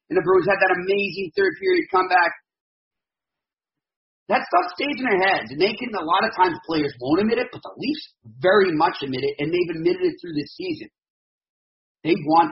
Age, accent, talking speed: 40-59, American, 195 wpm